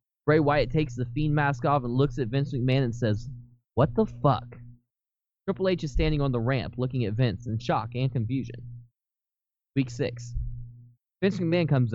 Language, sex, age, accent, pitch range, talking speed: English, male, 10-29, American, 120-140 Hz, 180 wpm